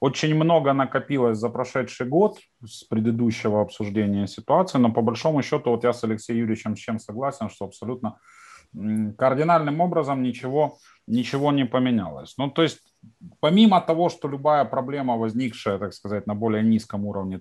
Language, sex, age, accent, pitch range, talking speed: Ukrainian, male, 30-49, native, 105-140 Hz, 155 wpm